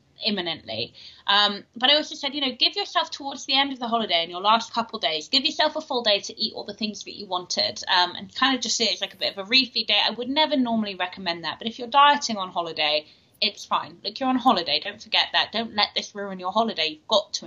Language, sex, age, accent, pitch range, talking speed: English, female, 20-39, British, 190-245 Hz, 270 wpm